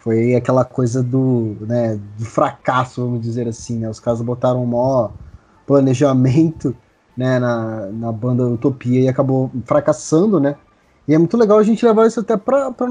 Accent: Brazilian